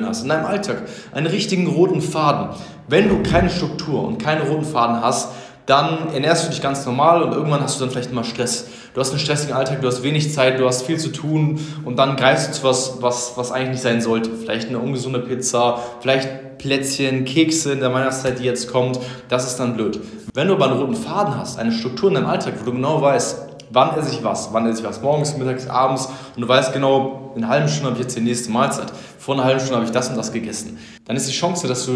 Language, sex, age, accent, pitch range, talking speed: German, male, 20-39, German, 125-160 Hz, 245 wpm